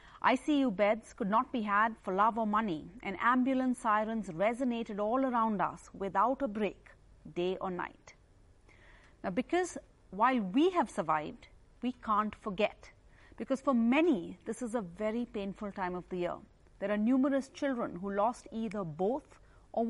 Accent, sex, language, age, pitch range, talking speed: Indian, female, English, 40-59, 190-245 Hz, 160 wpm